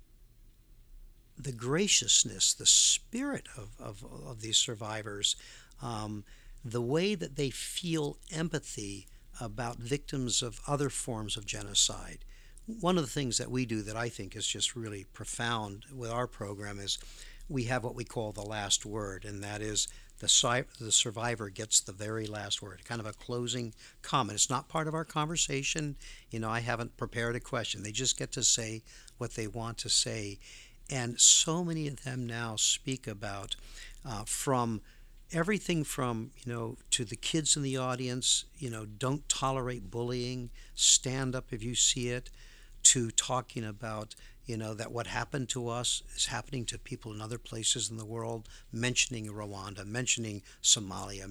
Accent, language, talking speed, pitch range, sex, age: American, English, 170 wpm, 105-130 Hz, male, 60-79